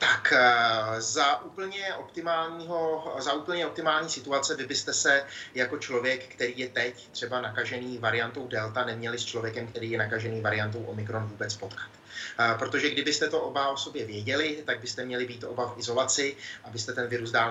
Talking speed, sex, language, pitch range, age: 165 wpm, male, Czech, 110-130 Hz, 30-49